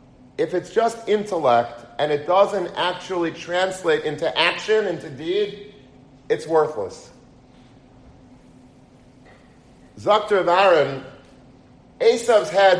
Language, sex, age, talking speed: English, male, 40-59, 90 wpm